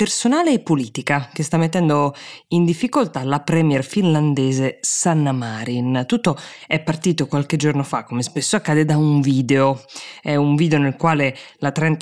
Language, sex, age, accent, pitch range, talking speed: Italian, female, 20-39, native, 135-170 Hz, 155 wpm